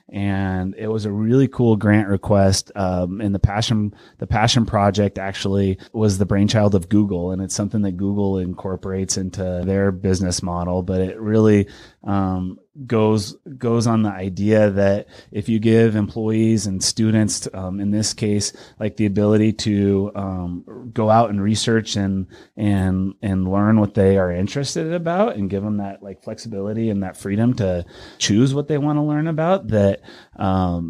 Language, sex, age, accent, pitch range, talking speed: English, male, 30-49, American, 95-105 Hz, 170 wpm